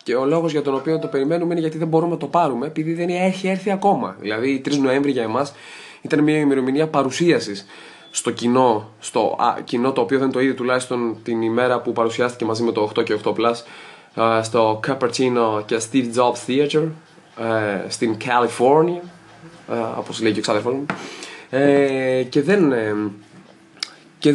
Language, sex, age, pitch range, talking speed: Greek, male, 20-39, 115-145 Hz, 160 wpm